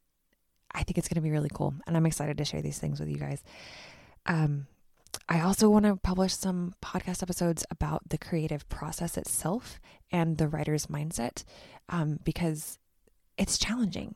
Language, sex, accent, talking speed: English, female, American, 170 wpm